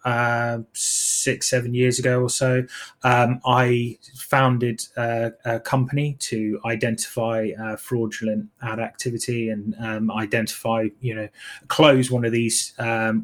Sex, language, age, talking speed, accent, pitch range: male, English, 20-39, 130 wpm, British, 110-125 Hz